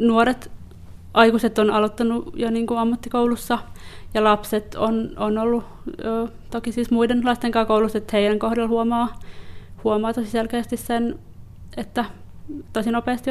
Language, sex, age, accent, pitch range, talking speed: Finnish, female, 20-39, native, 215-235 Hz, 135 wpm